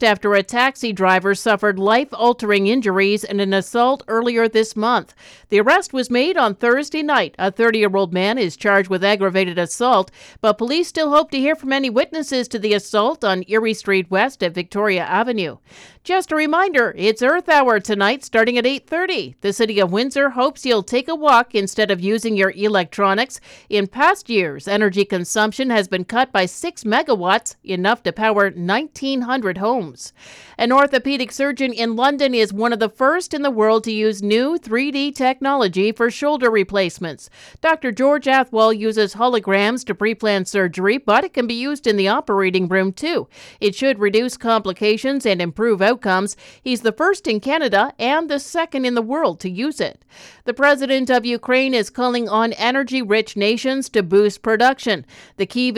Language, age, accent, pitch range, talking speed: English, 50-69, American, 200-260 Hz, 175 wpm